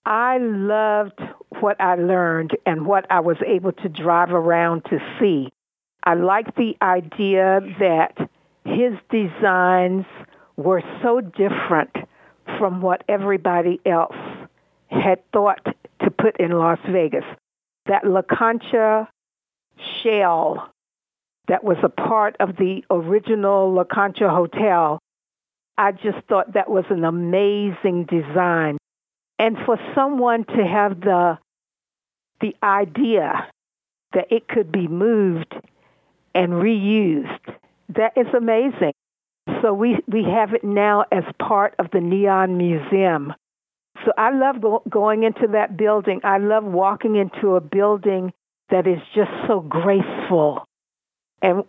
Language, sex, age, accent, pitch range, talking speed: English, female, 60-79, American, 180-220 Hz, 125 wpm